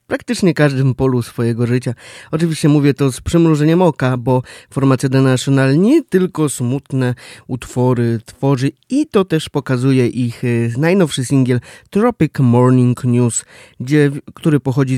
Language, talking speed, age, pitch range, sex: Polish, 130 wpm, 20-39, 125-150 Hz, male